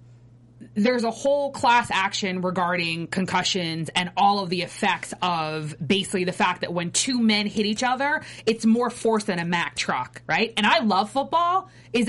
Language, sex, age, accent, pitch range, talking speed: English, female, 20-39, American, 175-240 Hz, 180 wpm